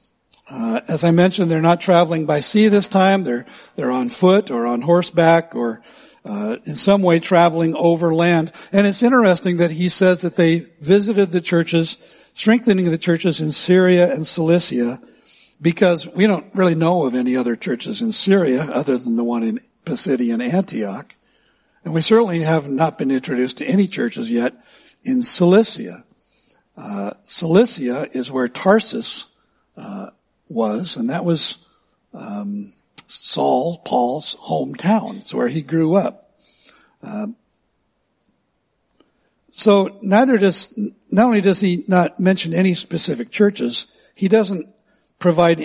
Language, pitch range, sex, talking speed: English, 165-210 Hz, male, 145 wpm